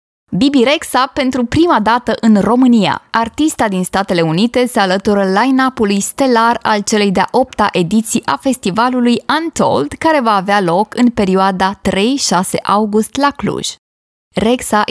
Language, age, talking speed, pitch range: Romanian, 20-39, 135 wpm, 180-230 Hz